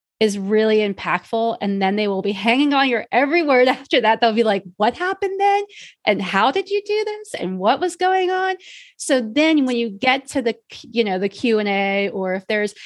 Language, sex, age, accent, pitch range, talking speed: English, female, 30-49, American, 195-240 Hz, 215 wpm